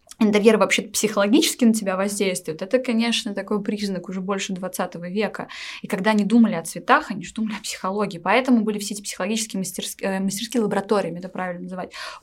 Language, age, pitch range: Russian, 20-39, 185-235 Hz